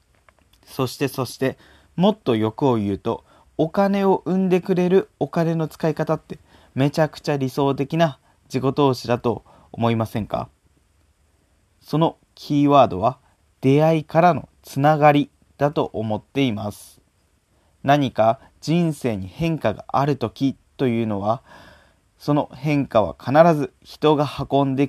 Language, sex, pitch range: Japanese, male, 110-150 Hz